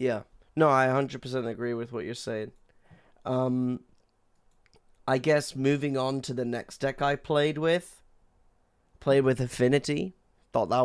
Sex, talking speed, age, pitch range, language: male, 145 wpm, 20-39, 120-140 Hz, English